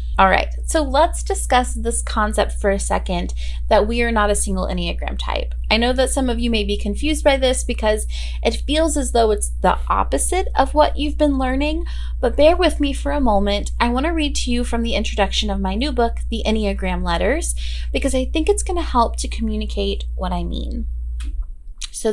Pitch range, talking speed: 200-260 Hz, 210 wpm